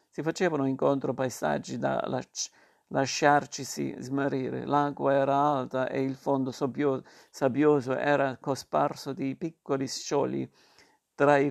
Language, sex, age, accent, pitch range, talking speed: Italian, male, 50-69, native, 130-140 Hz, 120 wpm